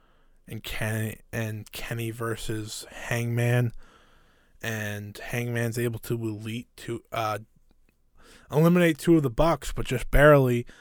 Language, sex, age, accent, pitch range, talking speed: English, male, 20-39, American, 110-140 Hz, 115 wpm